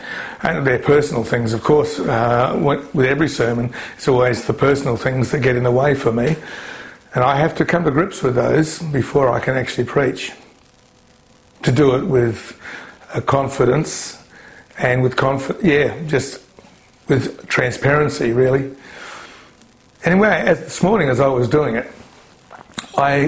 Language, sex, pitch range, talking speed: English, male, 125-150 Hz, 150 wpm